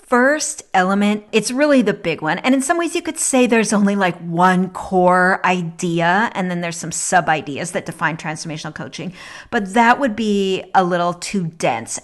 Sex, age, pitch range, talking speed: female, 40-59, 180-225 Hz, 190 wpm